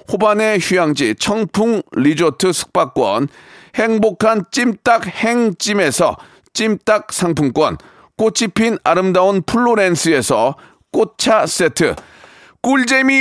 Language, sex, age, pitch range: Korean, male, 40-59, 180-225 Hz